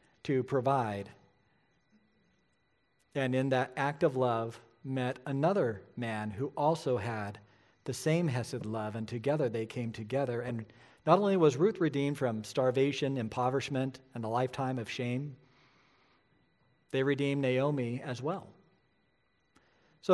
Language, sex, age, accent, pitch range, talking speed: English, male, 50-69, American, 115-155 Hz, 130 wpm